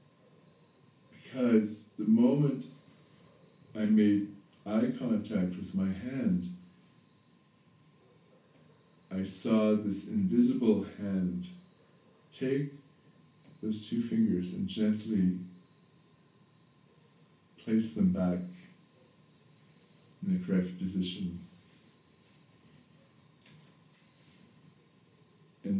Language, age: English, 50-69